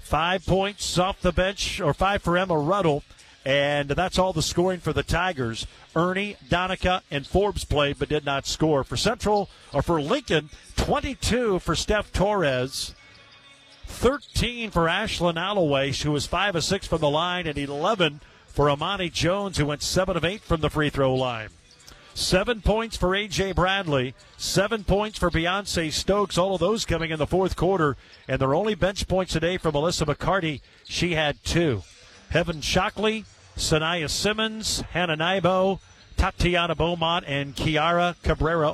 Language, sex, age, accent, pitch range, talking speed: English, male, 50-69, American, 145-195 Hz, 160 wpm